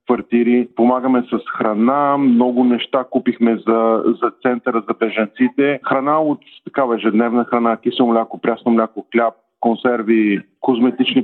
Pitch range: 115-125 Hz